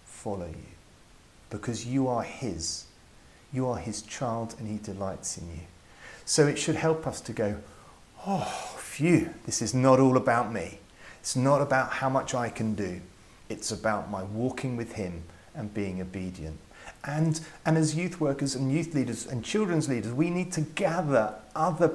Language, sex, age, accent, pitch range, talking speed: English, male, 40-59, British, 105-145 Hz, 170 wpm